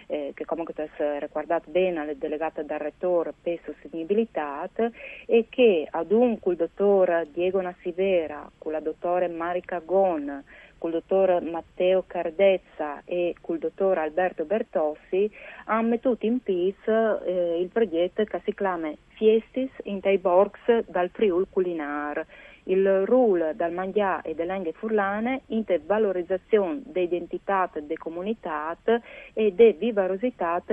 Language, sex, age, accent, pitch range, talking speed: Italian, female, 40-59, native, 165-205 Hz, 130 wpm